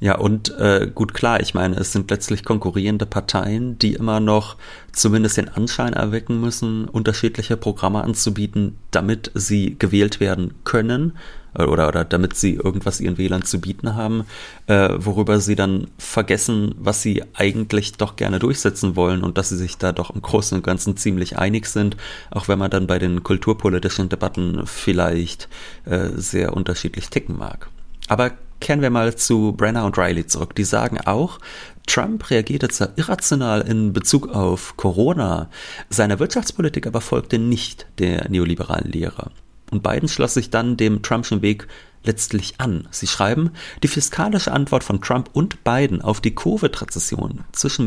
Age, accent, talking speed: 30-49, German, 160 wpm